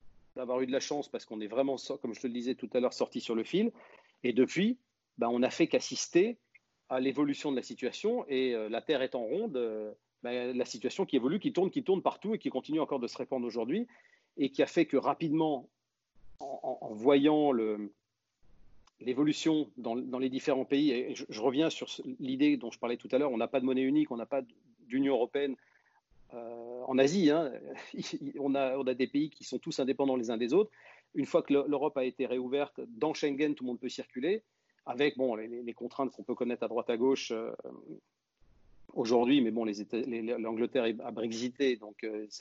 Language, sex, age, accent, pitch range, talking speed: French, male, 40-59, French, 120-150 Hz, 215 wpm